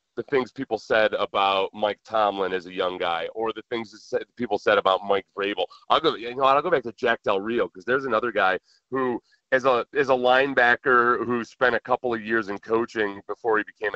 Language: English